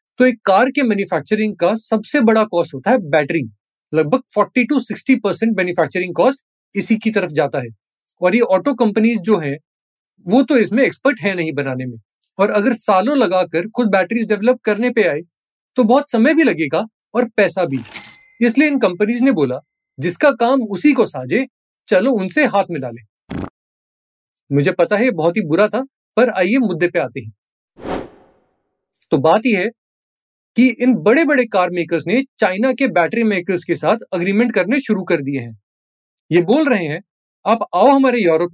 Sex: male